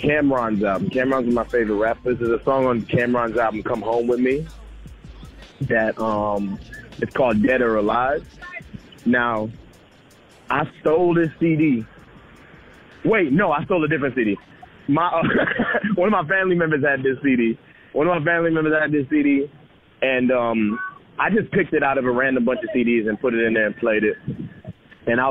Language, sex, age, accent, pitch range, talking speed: English, male, 30-49, American, 115-150 Hz, 185 wpm